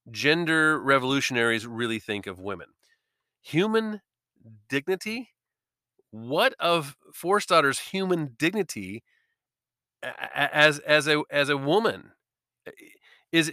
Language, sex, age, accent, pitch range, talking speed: English, male, 40-59, American, 135-175 Hz, 95 wpm